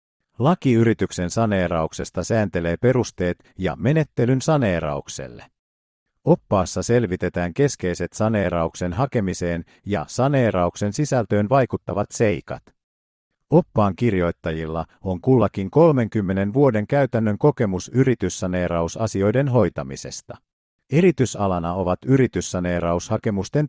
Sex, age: male, 50-69